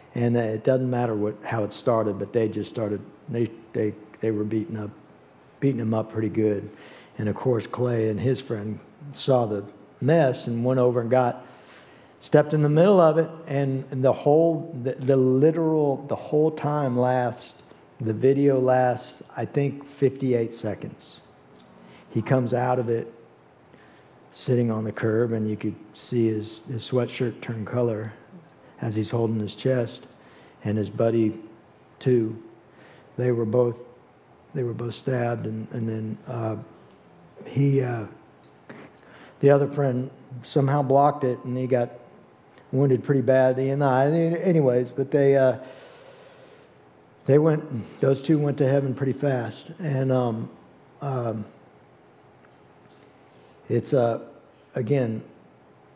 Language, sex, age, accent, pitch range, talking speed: English, male, 50-69, American, 110-135 Hz, 145 wpm